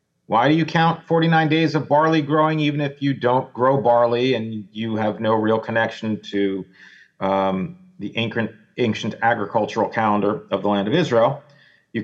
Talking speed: 170 wpm